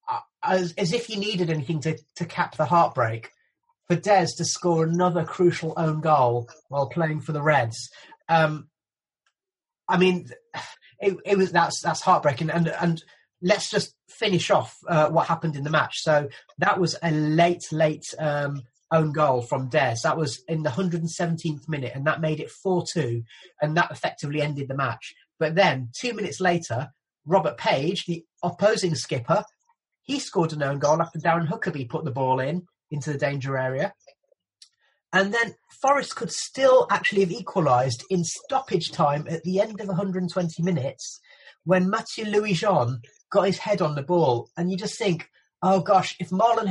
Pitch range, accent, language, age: 150-190 Hz, British, English, 30-49